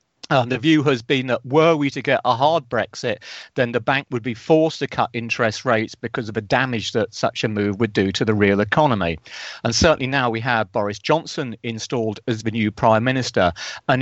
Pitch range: 115-140 Hz